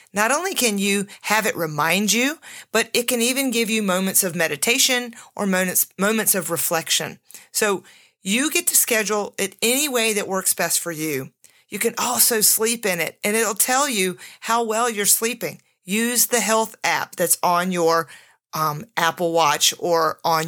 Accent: American